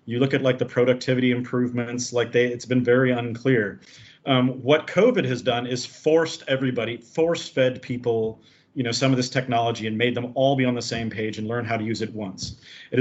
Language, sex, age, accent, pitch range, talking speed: English, male, 40-59, American, 115-135 Hz, 215 wpm